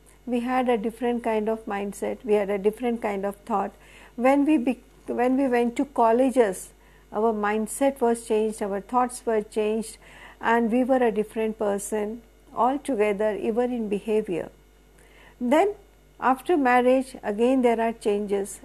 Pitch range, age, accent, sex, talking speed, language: 225-260 Hz, 50-69, native, female, 155 wpm, Hindi